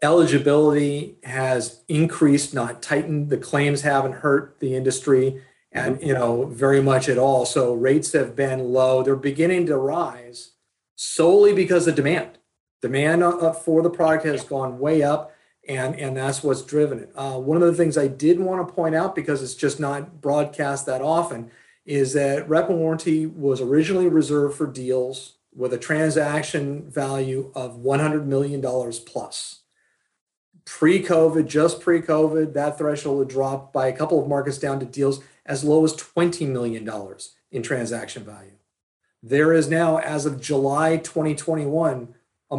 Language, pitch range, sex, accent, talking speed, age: English, 130-160 Hz, male, American, 160 wpm, 40-59